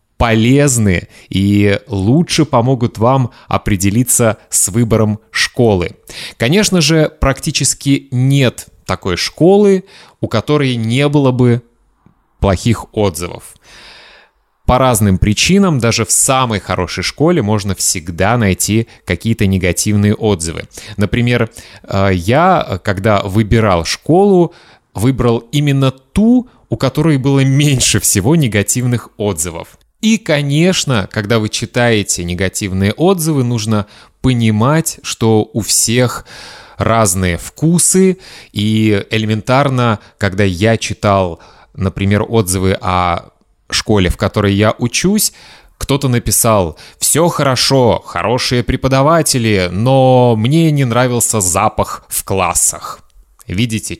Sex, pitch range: male, 100-130 Hz